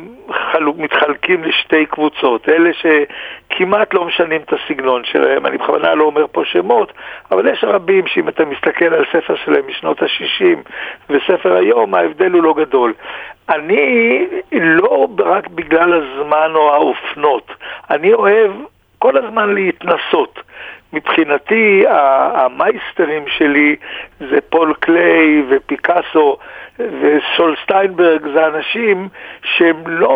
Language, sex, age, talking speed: Hebrew, male, 60-79, 115 wpm